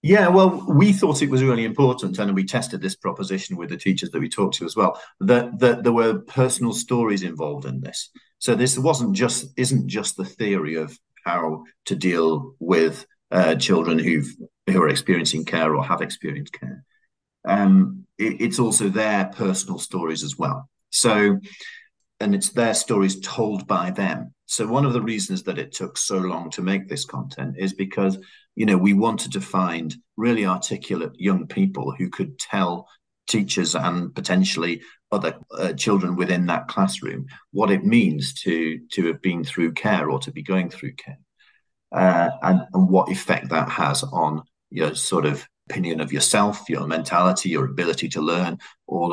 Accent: British